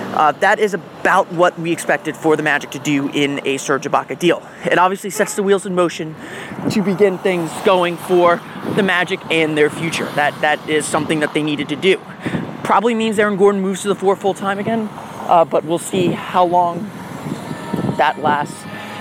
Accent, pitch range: American, 160-195 Hz